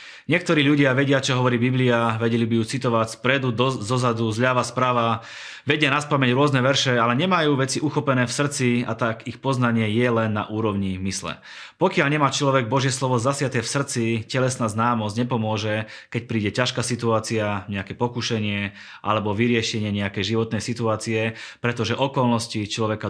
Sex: male